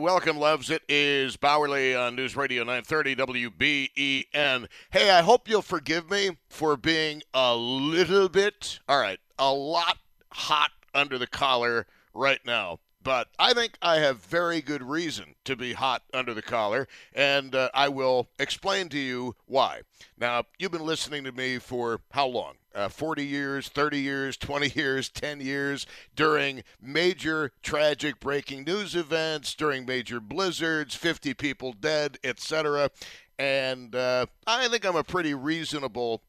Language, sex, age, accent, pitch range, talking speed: English, male, 50-69, American, 125-155 Hz, 150 wpm